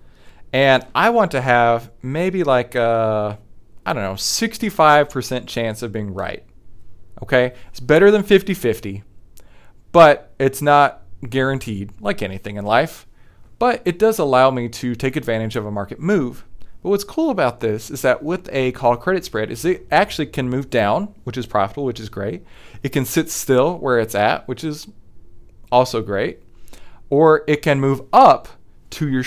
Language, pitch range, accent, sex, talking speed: English, 115-160 Hz, American, male, 170 wpm